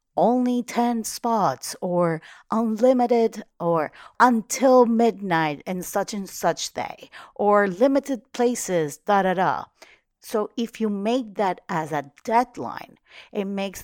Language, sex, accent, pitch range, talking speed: English, female, American, 155-210 Hz, 115 wpm